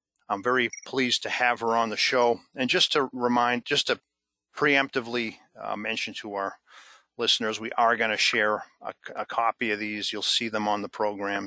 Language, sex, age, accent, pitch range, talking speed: English, male, 50-69, American, 110-130 Hz, 190 wpm